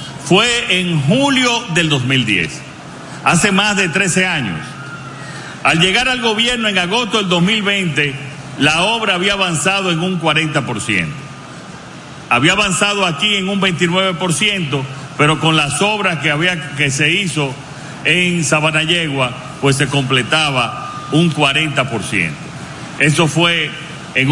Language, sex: Spanish, male